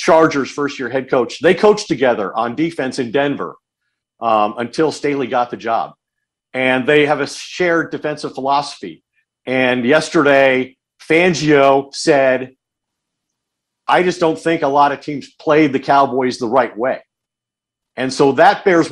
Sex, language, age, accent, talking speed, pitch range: male, English, 50-69, American, 150 wpm, 135-170 Hz